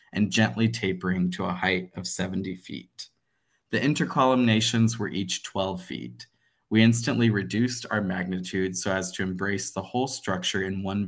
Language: English